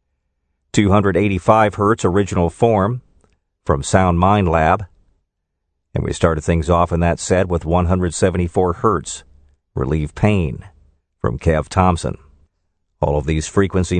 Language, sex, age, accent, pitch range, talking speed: English, male, 50-69, American, 80-100 Hz, 120 wpm